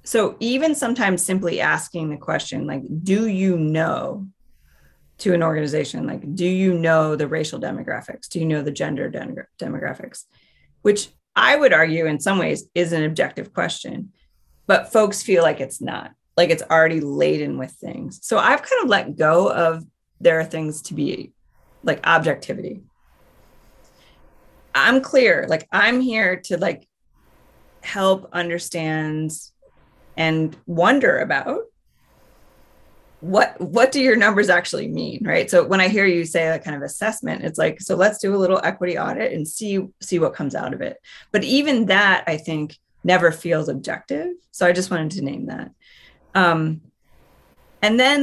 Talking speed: 160 wpm